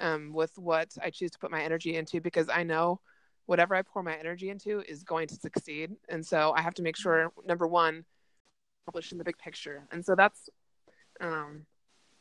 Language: English